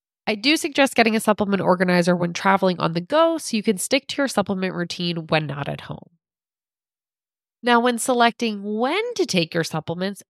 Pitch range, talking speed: 185-245 Hz, 185 wpm